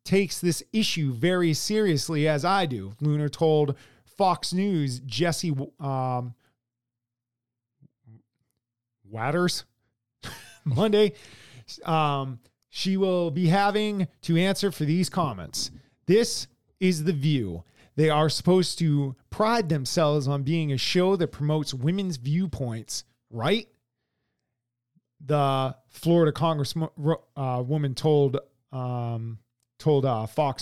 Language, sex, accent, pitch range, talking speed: English, male, American, 130-180 Hz, 110 wpm